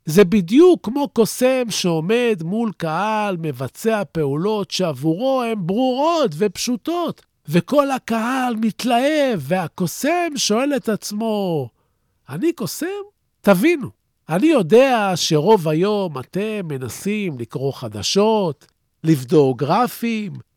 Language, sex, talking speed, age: Hebrew, male, 95 wpm, 50-69